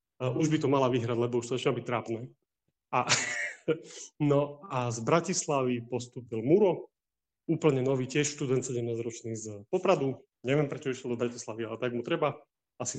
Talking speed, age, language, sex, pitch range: 165 wpm, 30-49, Slovak, male, 120-145 Hz